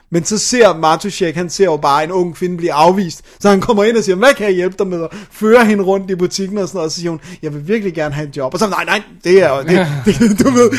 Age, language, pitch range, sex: 30-49, Danish, 145-185 Hz, male